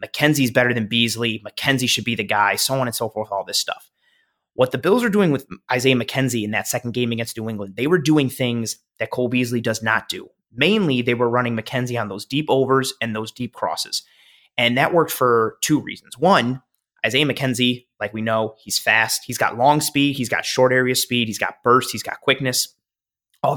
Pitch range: 115-150 Hz